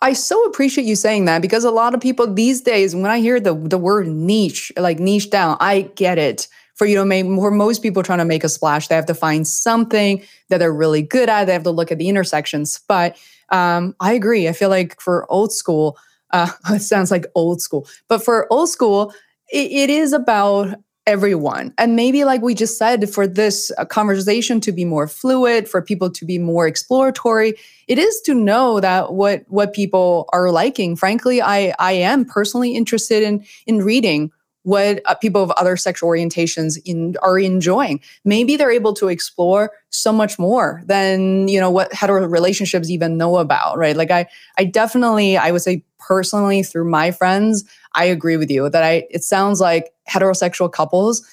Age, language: 20-39, English